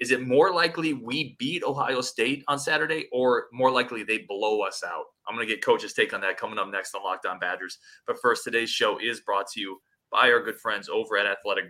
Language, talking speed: English, 235 wpm